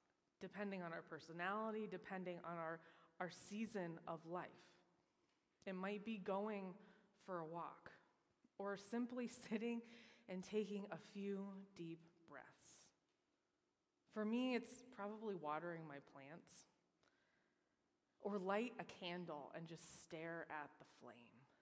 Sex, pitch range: female, 165-210 Hz